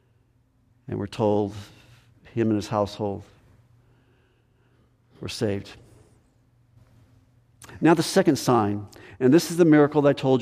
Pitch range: 120-150 Hz